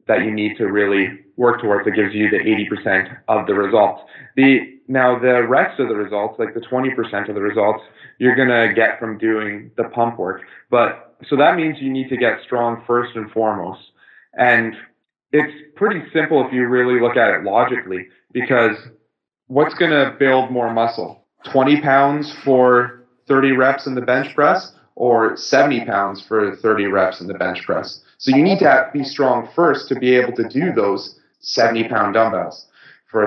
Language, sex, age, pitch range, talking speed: English, male, 30-49, 110-135 Hz, 185 wpm